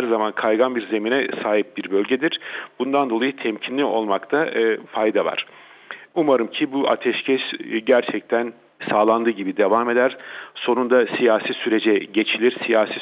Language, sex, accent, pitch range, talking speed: Turkish, male, native, 110-130 Hz, 135 wpm